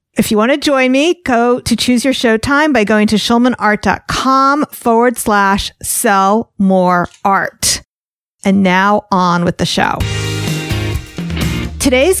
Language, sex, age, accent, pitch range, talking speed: English, female, 40-59, American, 195-260 Hz, 135 wpm